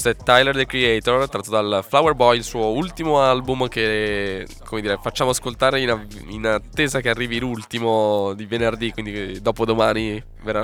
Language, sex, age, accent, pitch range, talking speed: Italian, male, 10-29, native, 100-115 Hz, 175 wpm